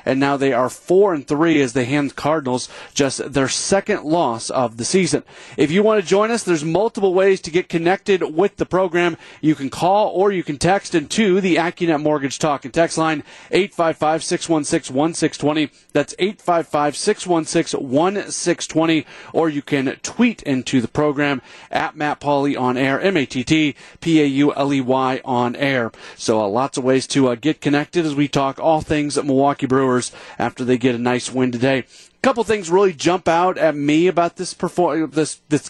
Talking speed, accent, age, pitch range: 170 wpm, American, 40-59, 135-175 Hz